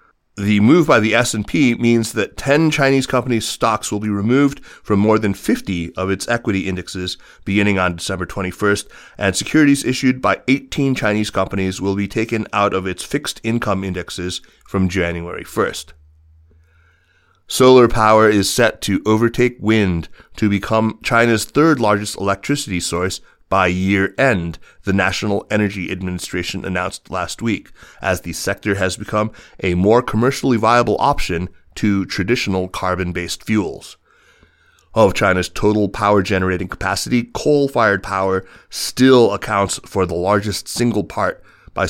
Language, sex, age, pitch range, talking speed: English, male, 30-49, 90-110 Hz, 140 wpm